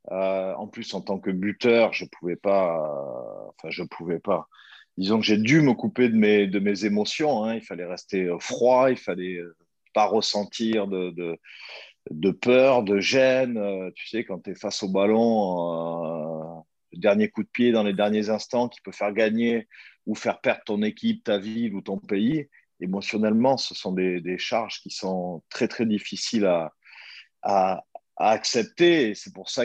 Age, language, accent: 40-59, French, French